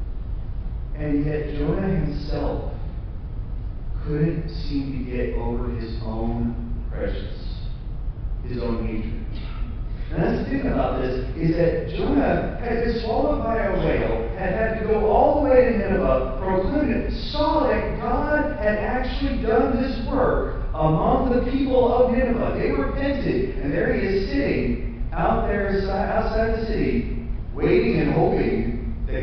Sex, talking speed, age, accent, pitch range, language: male, 145 wpm, 40-59, American, 115-190 Hz, English